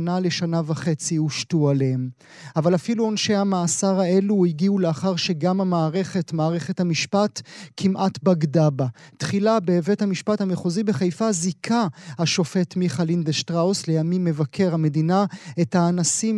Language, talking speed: Hebrew, 115 wpm